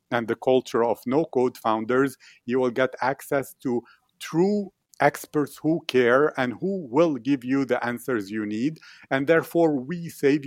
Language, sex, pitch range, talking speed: English, male, 115-140 Hz, 160 wpm